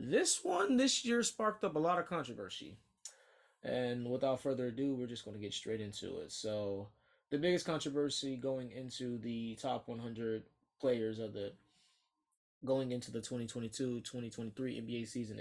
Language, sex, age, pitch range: English, male, 20-39, 110-150 Hz